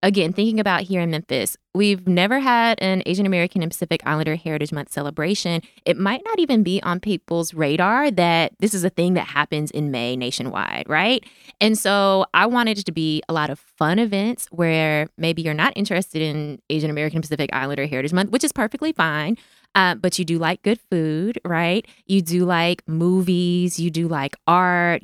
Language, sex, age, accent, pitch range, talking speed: English, female, 20-39, American, 160-215 Hz, 195 wpm